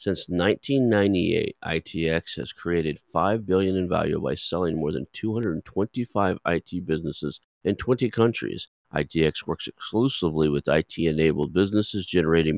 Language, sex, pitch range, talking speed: English, male, 80-105 Hz, 125 wpm